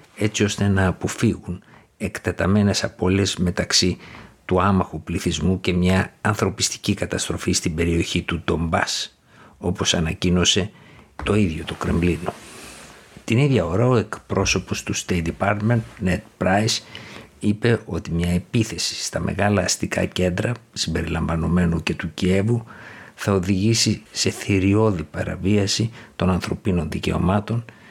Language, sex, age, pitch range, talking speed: Greek, male, 60-79, 90-105 Hz, 115 wpm